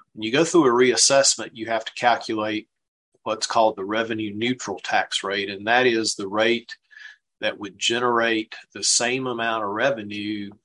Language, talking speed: English, 170 wpm